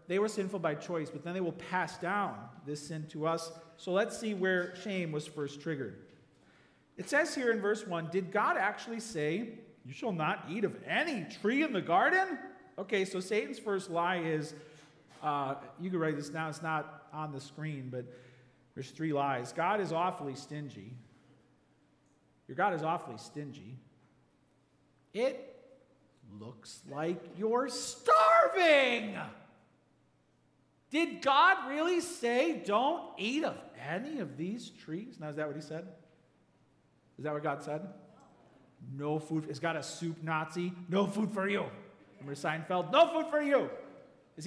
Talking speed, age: 160 wpm, 40-59